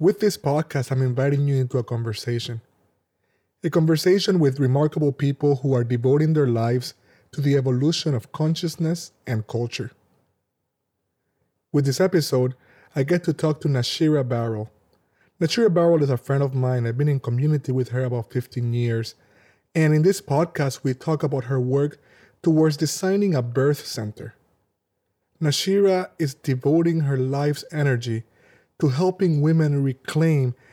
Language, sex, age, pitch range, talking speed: English, male, 30-49, 125-155 Hz, 150 wpm